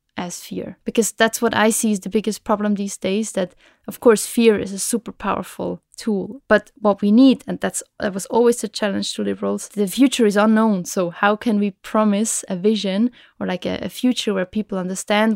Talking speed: 210 wpm